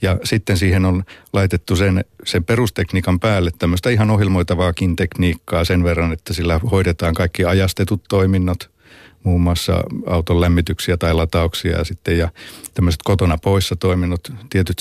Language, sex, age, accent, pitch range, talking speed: Finnish, male, 50-69, native, 90-105 Hz, 140 wpm